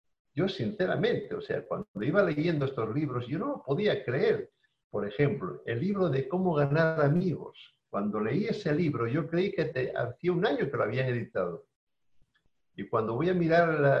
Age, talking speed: 60-79, 185 wpm